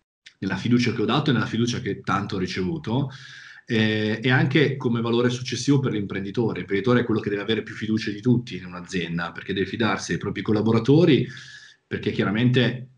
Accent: native